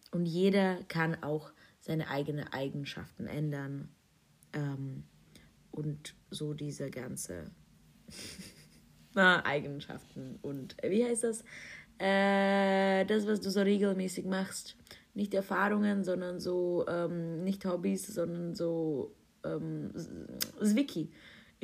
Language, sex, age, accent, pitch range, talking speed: German, female, 30-49, German, 160-215 Hz, 100 wpm